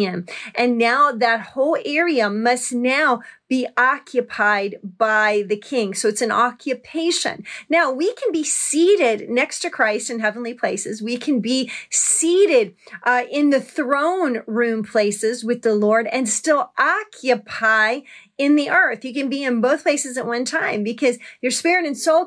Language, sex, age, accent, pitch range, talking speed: English, female, 40-59, American, 220-290 Hz, 160 wpm